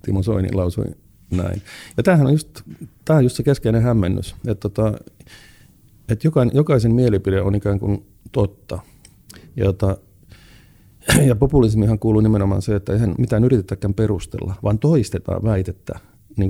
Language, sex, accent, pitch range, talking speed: Finnish, male, native, 95-115 Hz, 130 wpm